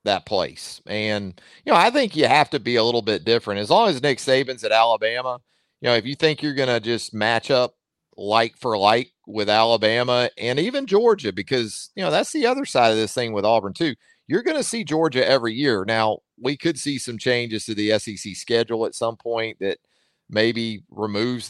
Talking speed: 210 wpm